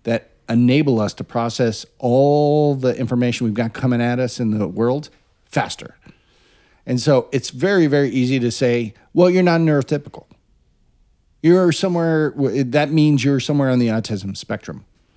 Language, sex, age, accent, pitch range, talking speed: English, male, 40-59, American, 110-140 Hz, 150 wpm